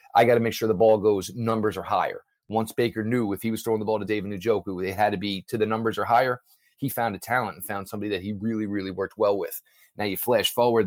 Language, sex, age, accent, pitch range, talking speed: English, male, 40-59, American, 100-120 Hz, 275 wpm